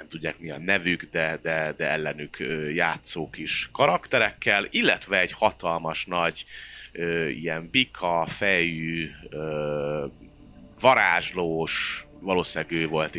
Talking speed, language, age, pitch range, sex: 100 wpm, Hungarian, 30-49, 85-105 Hz, male